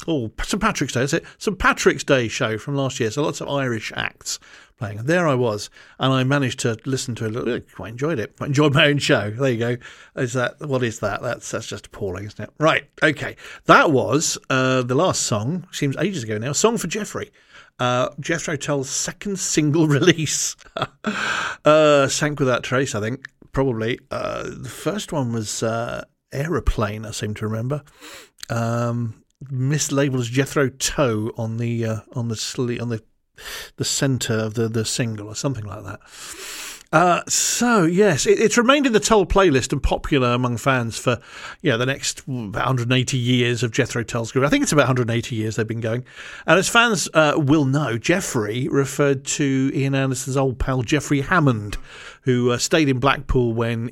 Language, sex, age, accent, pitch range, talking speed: English, male, 50-69, British, 120-150 Hz, 190 wpm